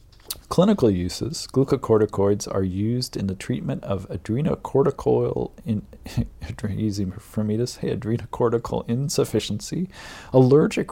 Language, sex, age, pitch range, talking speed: English, male, 40-59, 95-115 Hz, 70 wpm